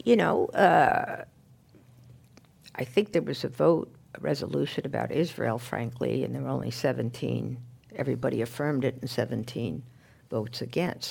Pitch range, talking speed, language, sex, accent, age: 130-170 Hz, 140 wpm, English, female, American, 60-79